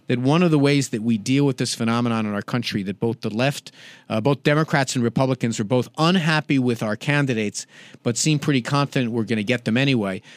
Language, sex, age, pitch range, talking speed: English, male, 50-69, 115-150 Hz, 225 wpm